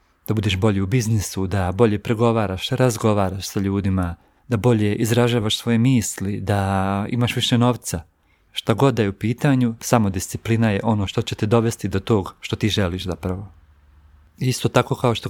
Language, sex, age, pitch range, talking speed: Croatian, male, 40-59, 100-120 Hz, 170 wpm